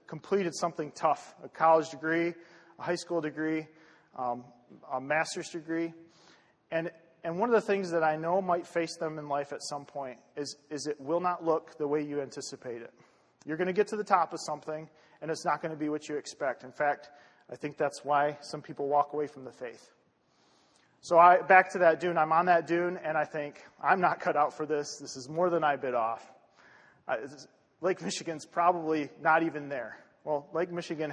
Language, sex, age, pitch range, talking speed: English, male, 30-49, 150-175 Hz, 205 wpm